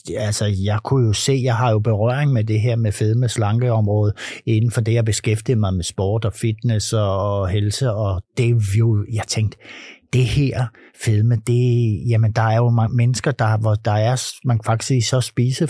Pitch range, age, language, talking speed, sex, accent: 110-140 Hz, 60-79, Danish, 205 wpm, male, native